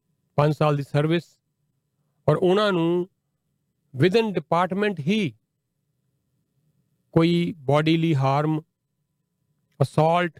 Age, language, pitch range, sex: 40-59, Punjabi, 145-165 Hz, male